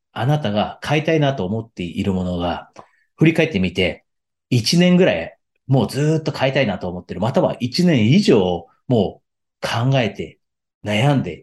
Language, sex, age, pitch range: Japanese, male, 40-59, 105-140 Hz